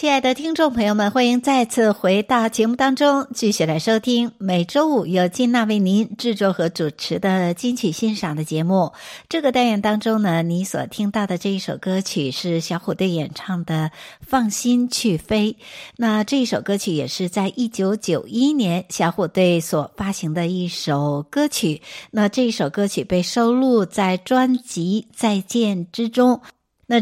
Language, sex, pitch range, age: Chinese, female, 175-235 Hz, 60-79